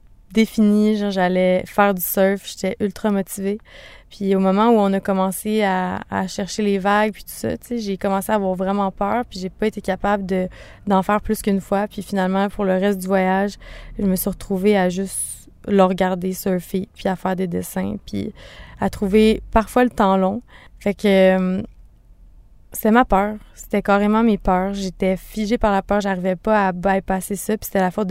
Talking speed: 200 wpm